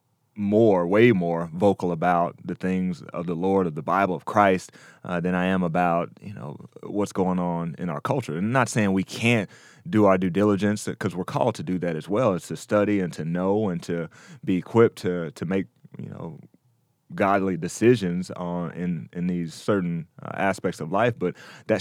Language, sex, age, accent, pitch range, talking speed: English, male, 30-49, American, 90-105 Hz, 205 wpm